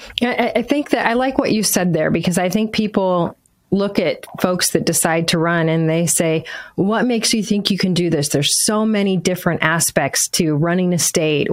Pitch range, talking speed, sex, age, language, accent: 170-210 Hz, 215 wpm, female, 30-49, English, American